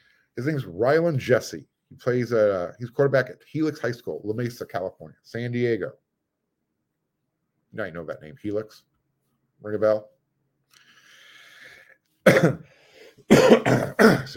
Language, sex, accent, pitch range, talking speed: English, male, American, 110-160 Hz, 125 wpm